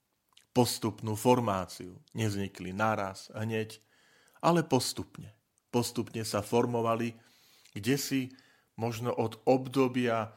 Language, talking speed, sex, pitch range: Slovak, 85 wpm, male, 95-115 Hz